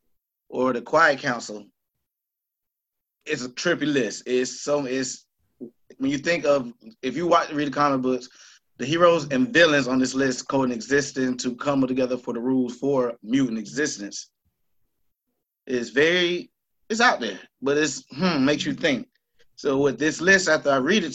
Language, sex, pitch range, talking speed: English, male, 120-140 Hz, 165 wpm